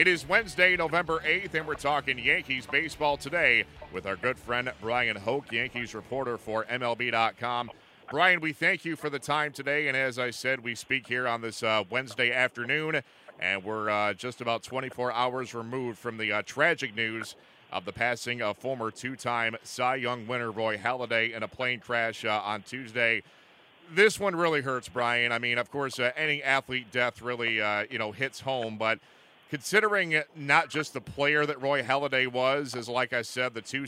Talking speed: 190 wpm